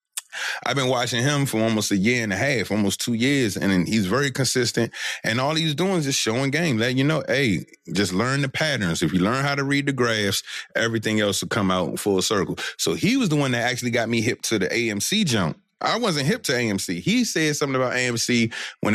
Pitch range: 100-130 Hz